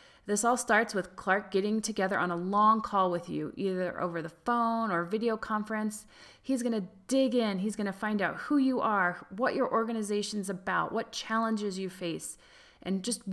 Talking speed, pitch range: 185 wpm, 180-230 Hz